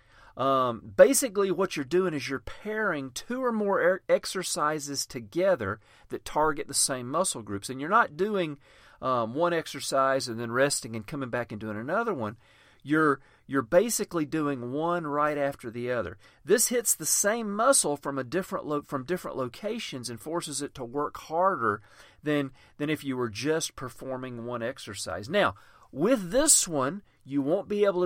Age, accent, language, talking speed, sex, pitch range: 40-59, American, English, 170 wpm, male, 120-170 Hz